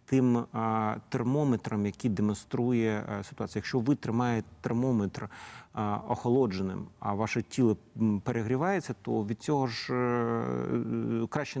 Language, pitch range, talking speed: Ukrainian, 105-130 Hz, 100 wpm